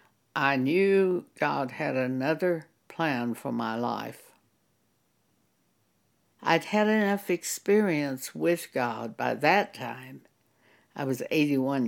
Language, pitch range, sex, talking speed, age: English, 135-185 Hz, female, 105 wpm, 60-79